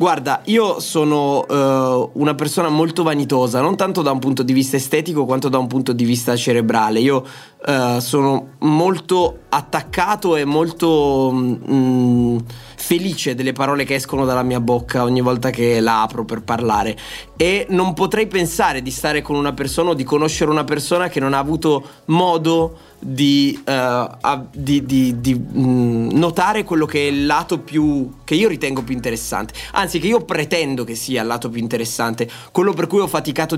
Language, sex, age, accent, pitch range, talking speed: Italian, male, 20-39, native, 130-160 Hz, 165 wpm